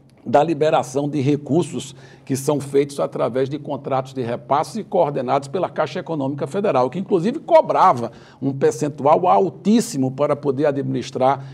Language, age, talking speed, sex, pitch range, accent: Portuguese, 60-79, 140 wpm, male, 130-180 Hz, Brazilian